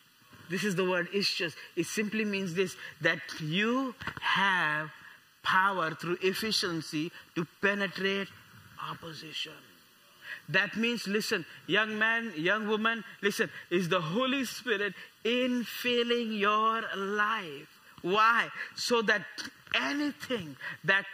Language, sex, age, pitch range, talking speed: English, male, 20-39, 190-245 Hz, 110 wpm